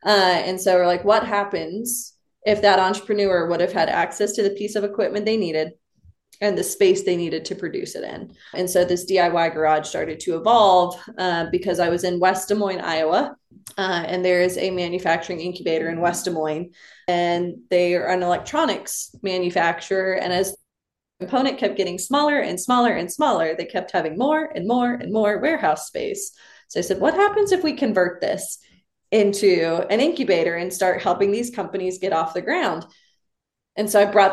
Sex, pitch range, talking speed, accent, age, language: female, 175-205 Hz, 190 wpm, American, 20-39, English